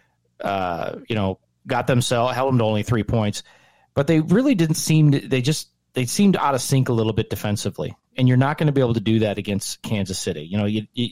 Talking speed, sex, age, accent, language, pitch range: 235 wpm, male, 30-49, American, English, 100-125 Hz